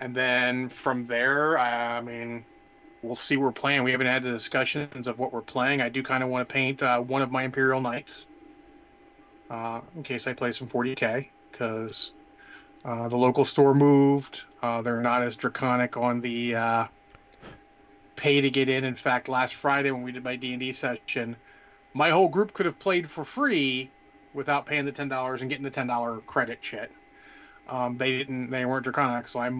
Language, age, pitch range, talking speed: English, 30-49, 120-140 Hz, 185 wpm